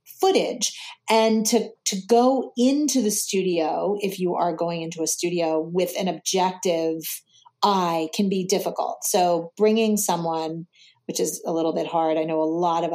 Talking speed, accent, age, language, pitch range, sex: 165 wpm, American, 30-49, English, 165-215 Hz, female